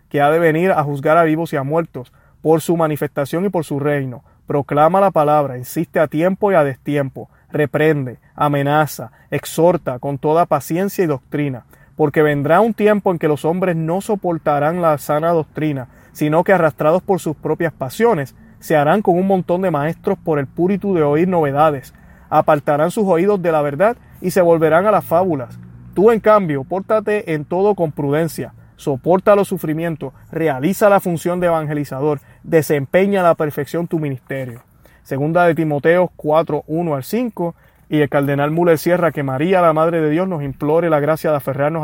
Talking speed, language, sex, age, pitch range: 180 wpm, Spanish, male, 30-49, 145-175 Hz